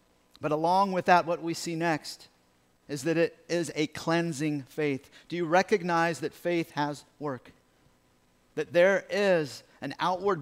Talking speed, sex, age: 155 wpm, male, 50-69